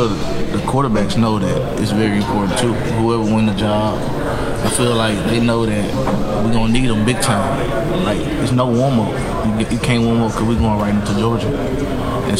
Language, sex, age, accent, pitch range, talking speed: English, male, 20-39, American, 105-120 Hz, 200 wpm